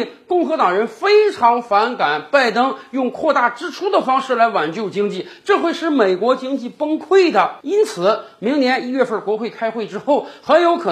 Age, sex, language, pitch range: 50-69, male, Chinese, 205-295 Hz